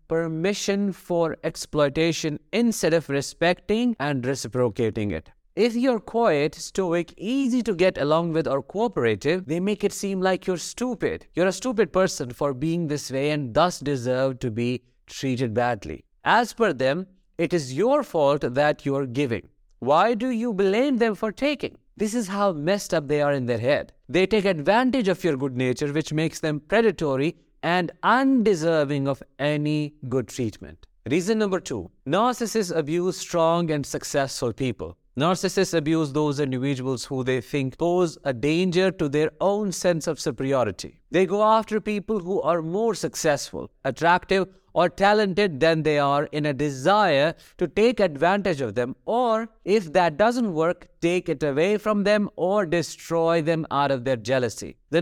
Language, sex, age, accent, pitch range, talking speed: English, male, 50-69, Indian, 140-195 Hz, 165 wpm